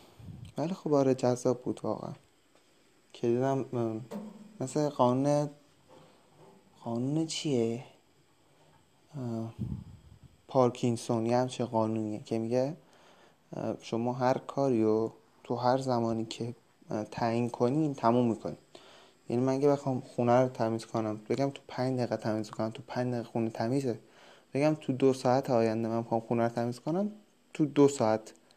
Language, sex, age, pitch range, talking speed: Persian, male, 20-39, 110-135 Hz, 130 wpm